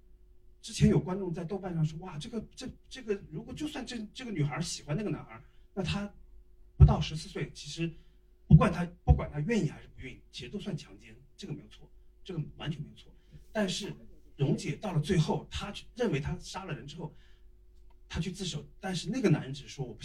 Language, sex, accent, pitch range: Chinese, male, native, 140-185 Hz